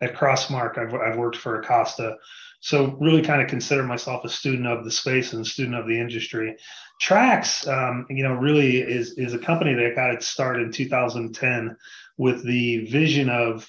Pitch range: 115-135 Hz